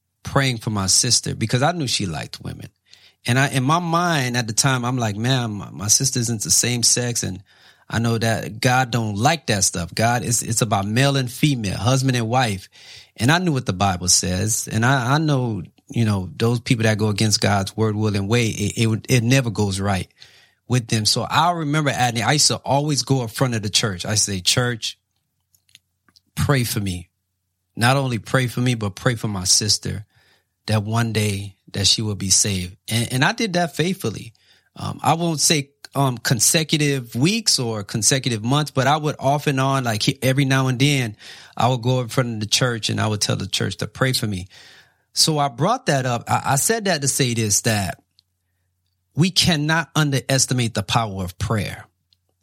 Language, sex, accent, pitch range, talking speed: English, male, American, 105-135 Hz, 205 wpm